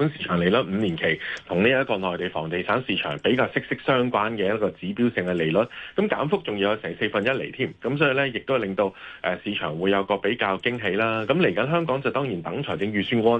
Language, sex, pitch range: Chinese, male, 95-135 Hz